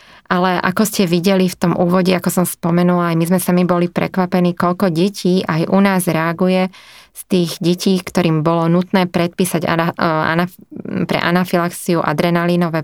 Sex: female